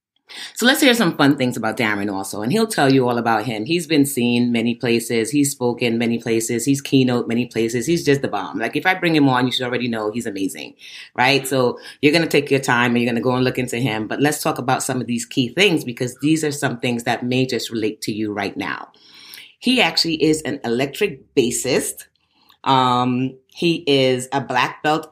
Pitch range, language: 120-140 Hz, English